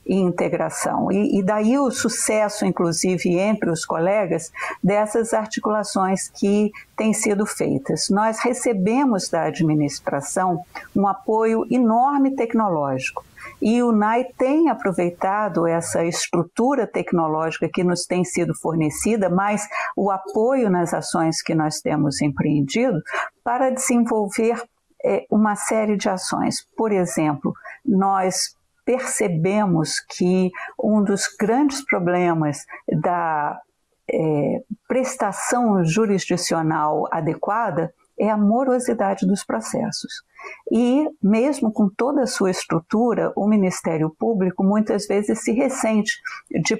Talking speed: 110 wpm